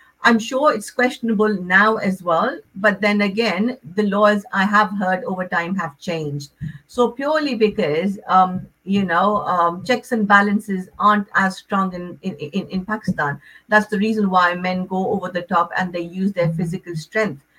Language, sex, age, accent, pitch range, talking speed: English, female, 50-69, Indian, 175-215 Hz, 175 wpm